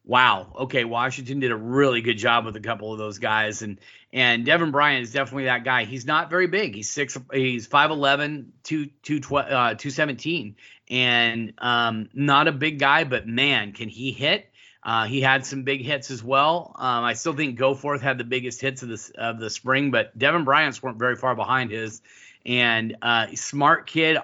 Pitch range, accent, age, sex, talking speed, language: 120-140 Hz, American, 30-49, male, 205 wpm, English